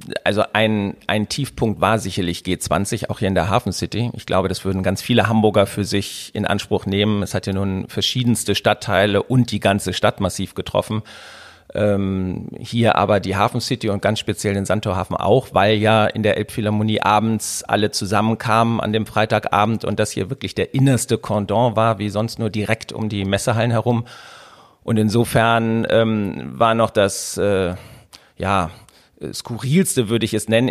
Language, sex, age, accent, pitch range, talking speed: German, male, 40-59, German, 105-120 Hz, 175 wpm